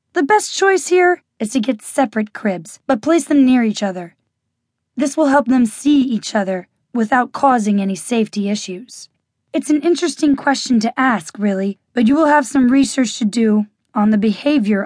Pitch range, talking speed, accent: 205-265 Hz, 180 wpm, American